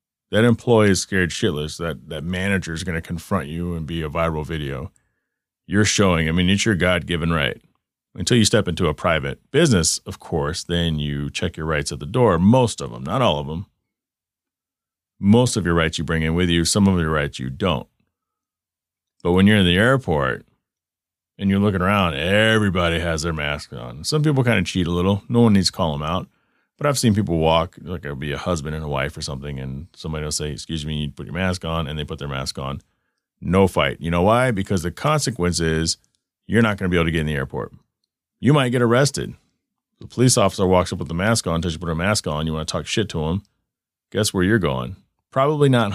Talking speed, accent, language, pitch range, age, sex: 235 wpm, American, English, 80-105 Hz, 30-49, male